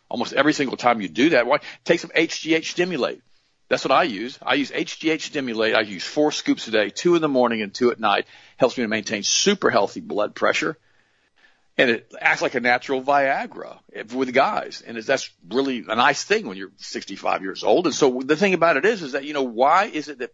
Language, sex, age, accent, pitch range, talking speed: English, male, 50-69, American, 120-160 Hz, 225 wpm